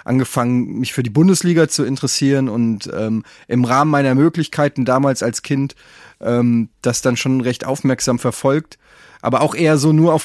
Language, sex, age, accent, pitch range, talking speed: German, male, 30-49, German, 120-140 Hz, 170 wpm